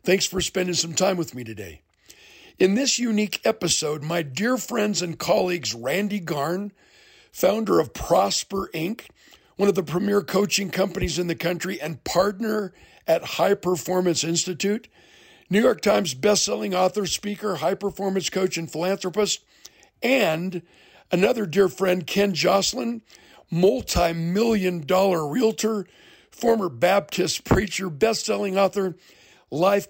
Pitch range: 170-210 Hz